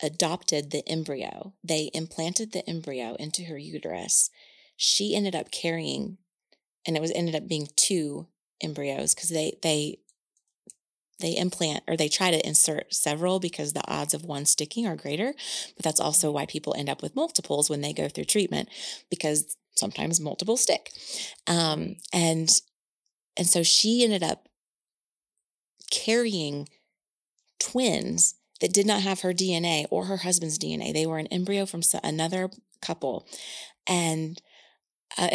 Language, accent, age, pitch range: English, American, 30-49, 155-195 Hz